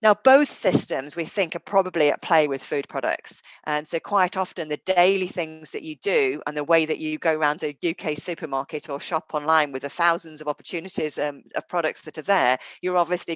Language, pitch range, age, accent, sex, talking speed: English, 140-180 Hz, 40-59, British, female, 215 wpm